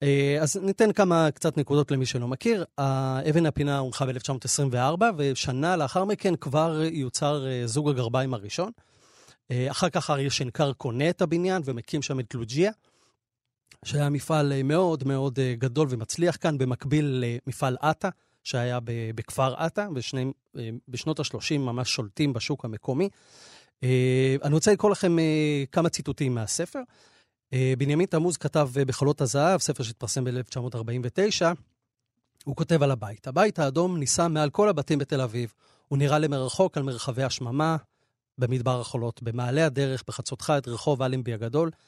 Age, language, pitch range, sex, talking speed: 30-49, Hebrew, 125-160 Hz, male, 130 wpm